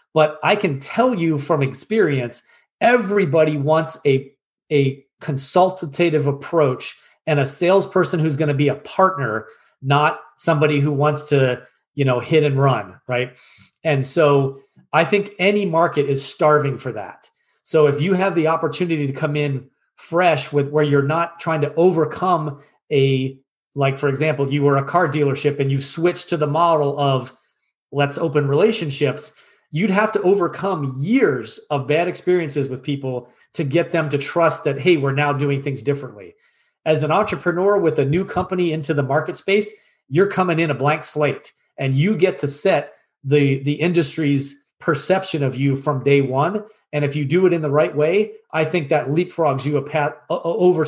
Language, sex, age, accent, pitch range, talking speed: English, male, 30-49, American, 140-175 Hz, 175 wpm